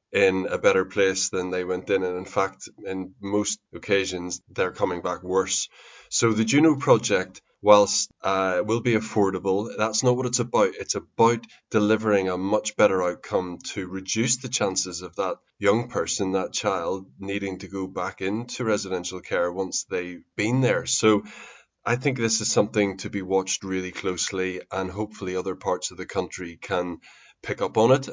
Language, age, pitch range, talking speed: English, 20-39, 95-110 Hz, 175 wpm